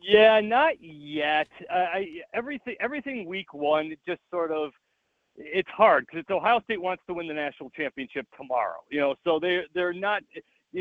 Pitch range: 150-215 Hz